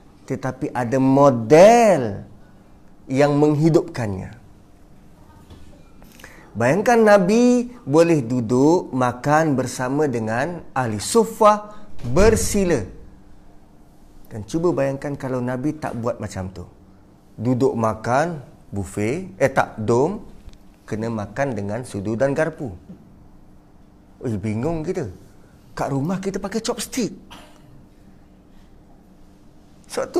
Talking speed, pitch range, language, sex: 90 wpm, 105-165 Hz, Malay, male